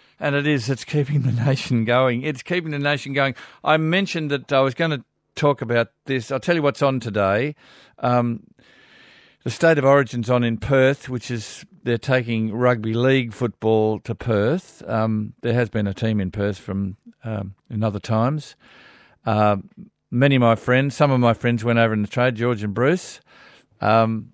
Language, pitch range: English, 115-135 Hz